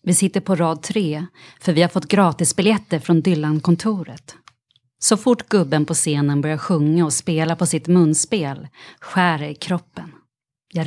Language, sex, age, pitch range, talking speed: Swedish, female, 30-49, 155-190 Hz, 155 wpm